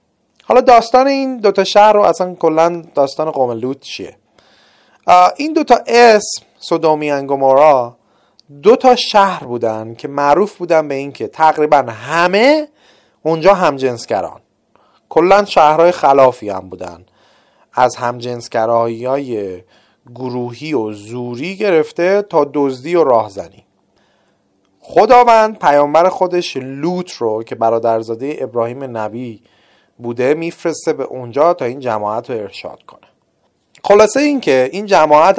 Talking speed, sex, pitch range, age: 115 wpm, male, 130-205 Hz, 30-49